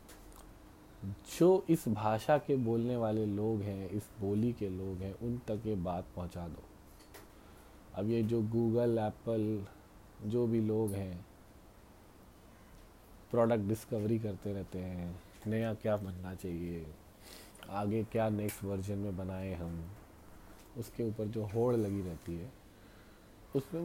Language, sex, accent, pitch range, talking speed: English, male, Indian, 95-120 Hz, 130 wpm